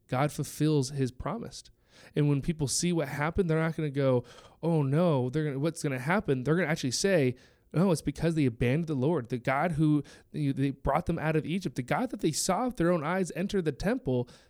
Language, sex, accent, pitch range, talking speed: English, male, American, 130-165 Hz, 235 wpm